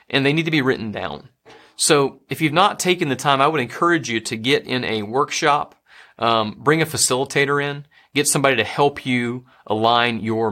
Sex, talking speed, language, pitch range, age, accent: male, 200 wpm, English, 110-145 Hz, 30-49, American